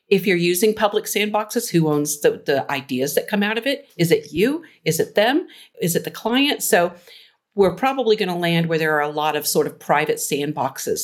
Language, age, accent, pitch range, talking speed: English, 50-69, American, 150-205 Hz, 225 wpm